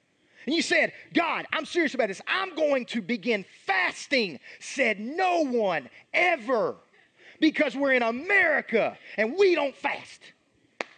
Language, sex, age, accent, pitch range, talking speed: English, male, 40-59, American, 205-320 Hz, 135 wpm